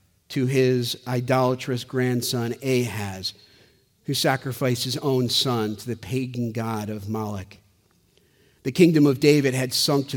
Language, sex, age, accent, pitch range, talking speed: English, male, 50-69, American, 115-140 Hz, 135 wpm